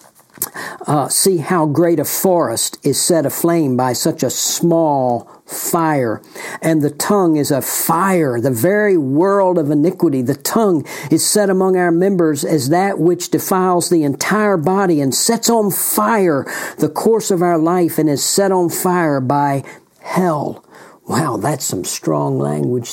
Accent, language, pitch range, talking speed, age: American, English, 150-175 Hz, 155 wpm, 60-79